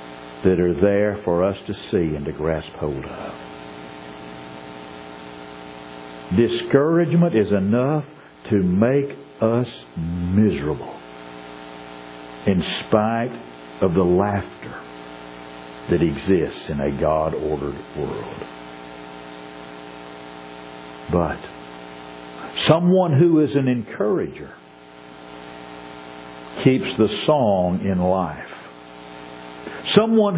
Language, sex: English, male